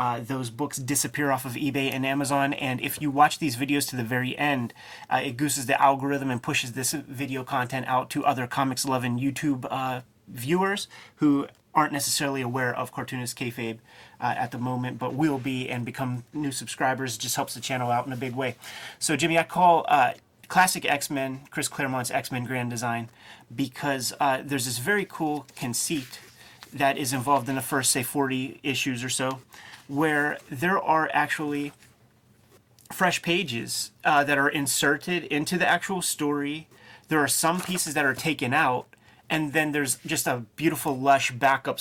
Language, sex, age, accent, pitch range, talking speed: English, male, 30-49, American, 125-145 Hz, 180 wpm